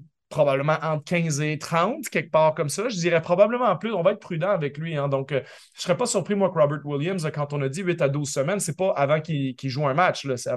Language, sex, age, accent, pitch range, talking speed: French, male, 30-49, Canadian, 135-175 Hz, 290 wpm